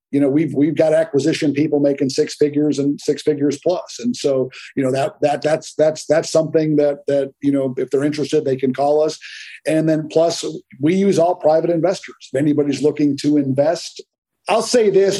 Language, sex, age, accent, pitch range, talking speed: English, male, 50-69, American, 145-170 Hz, 200 wpm